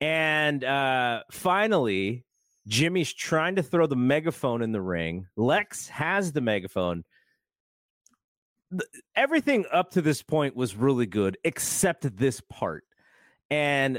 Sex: male